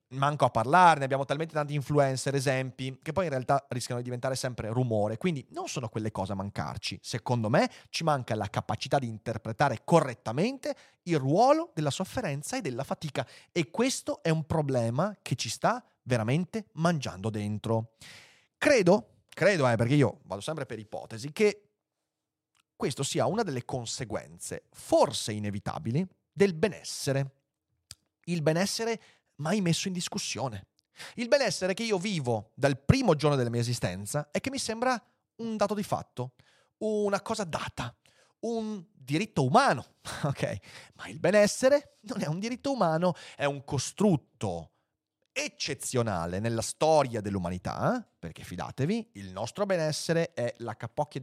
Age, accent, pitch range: 30-49, native, 115-180 Hz